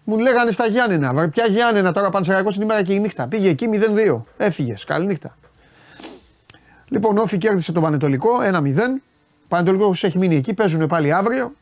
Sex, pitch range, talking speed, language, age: male, 135-195 Hz, 175 wpm, Greek, 30-49